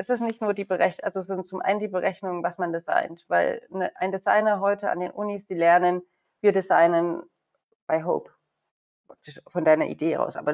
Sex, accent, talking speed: female, German, 195 wpm